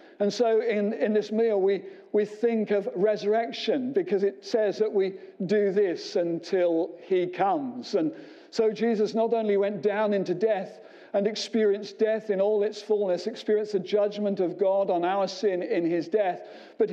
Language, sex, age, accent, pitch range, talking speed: English, male, 60-79, British, 190-235 Hz, 175 wpm